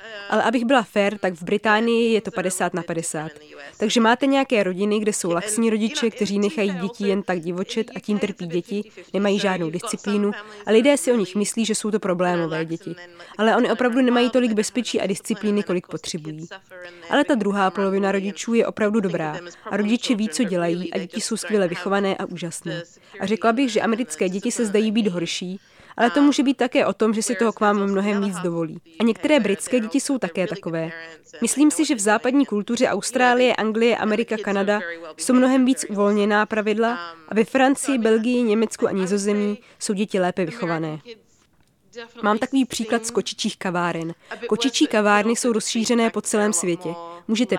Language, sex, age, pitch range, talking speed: Czech, female, 20-39, 185-230 Hz, 185 wpm